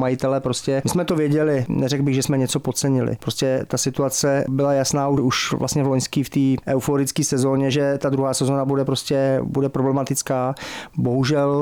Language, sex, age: Czech, male, 40-59